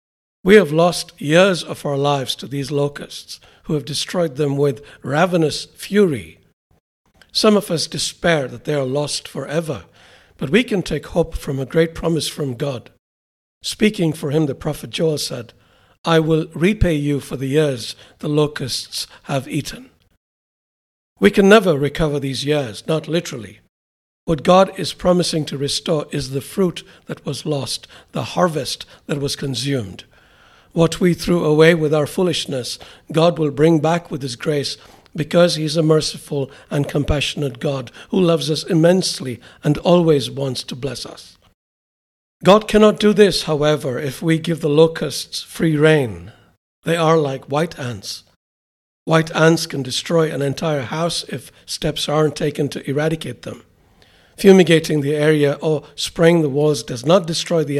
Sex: male